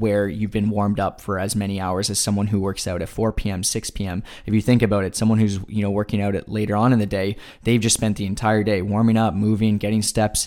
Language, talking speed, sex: English, 260 wpm, male